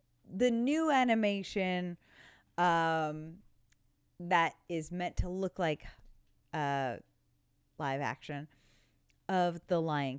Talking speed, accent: 95 wpm, American